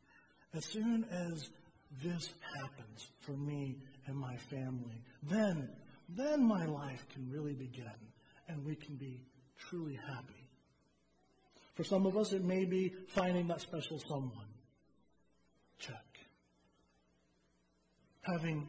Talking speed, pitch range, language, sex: 115 wpm, 120-170 Hz, English, male